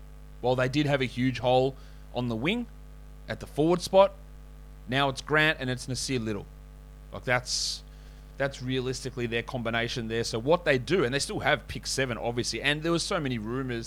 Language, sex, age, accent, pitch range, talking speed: English, male, 30-49, Australian, 115-140 Hz, 195 wpm